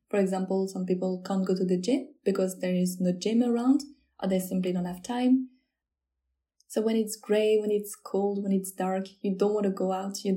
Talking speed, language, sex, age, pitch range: 220 wpm, French, female, 20-39, 195-235 Hz